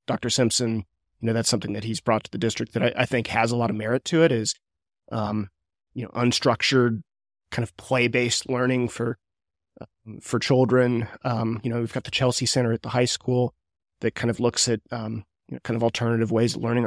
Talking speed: 225 wpm